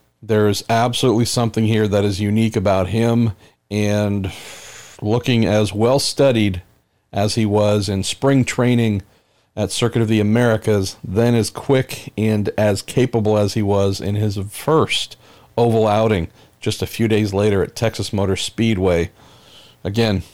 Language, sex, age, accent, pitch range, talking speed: English, male, 50-69, American, 100-115 Hz, 140 wpm